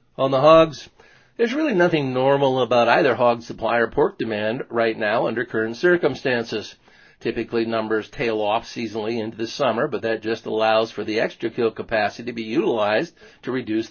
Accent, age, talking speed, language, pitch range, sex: American, 50-69, 175 wpm, English, 110-135 Hz, male